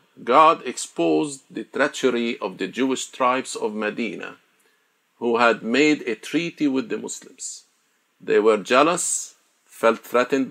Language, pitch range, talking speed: Arabic, 120-175 Hz, 130 wpm